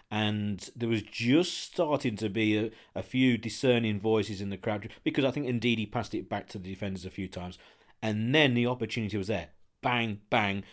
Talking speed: 205 wpm